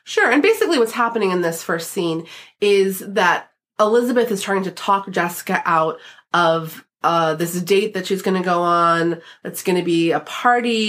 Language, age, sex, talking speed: English, 30-49, female, 185 wpm